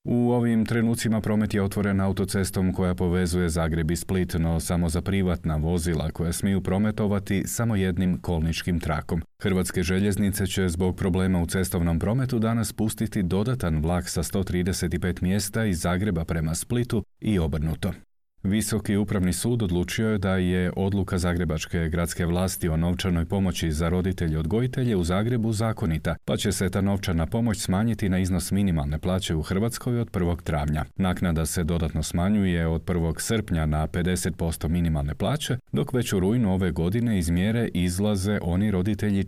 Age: 40-59